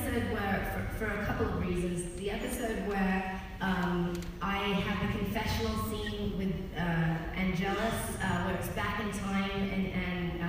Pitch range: 170-215 Hz